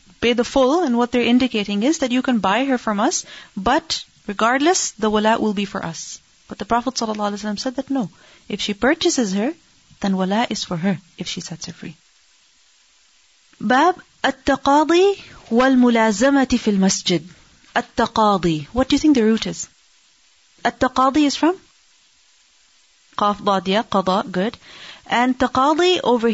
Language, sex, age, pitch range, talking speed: English, female, 30-49, 205-265 Hz, 160 wpm